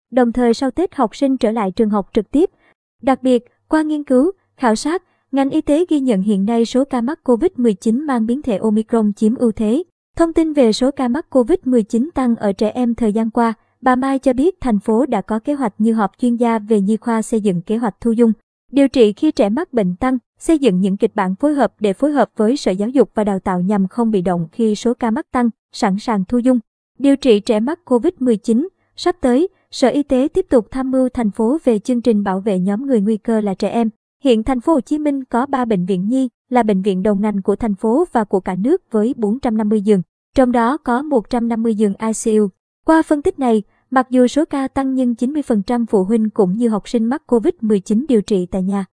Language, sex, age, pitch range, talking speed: Vietnamese, male, 20-39, 215-265 Hz, 240 wpm